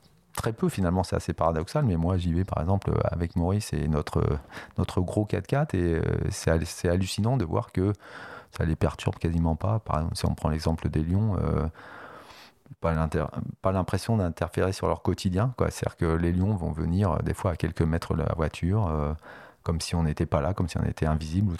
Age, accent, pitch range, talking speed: 30-49, French, 85-105 Hz, 215 wpm